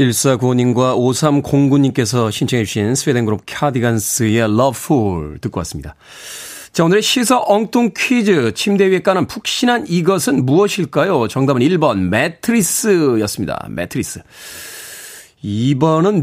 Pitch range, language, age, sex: 115-195 Hz, Korean, 40-59, male